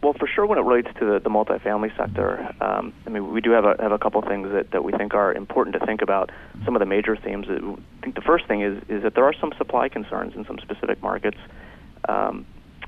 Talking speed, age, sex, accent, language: 260 wpm, 30-49, male, American, English